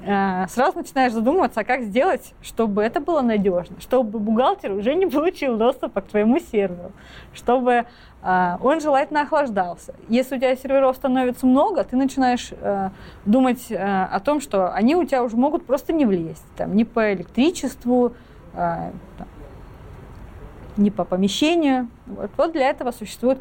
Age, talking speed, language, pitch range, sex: 20-39, 135 wpm, Russian, 190-255 Hz, female